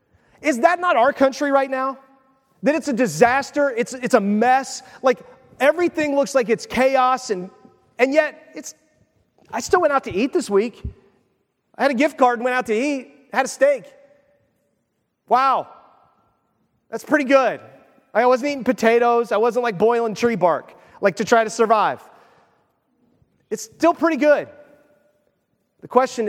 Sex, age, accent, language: male, 30-49, American, English